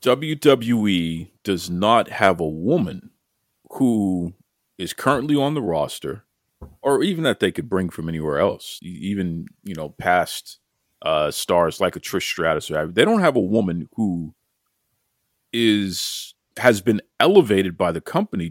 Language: English